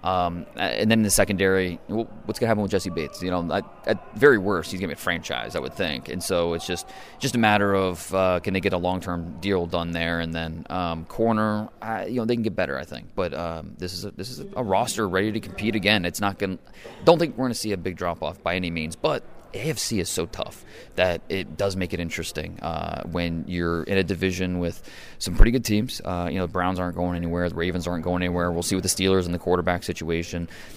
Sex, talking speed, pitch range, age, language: male, 255 wpm, 85-100 Hz, 20-39, English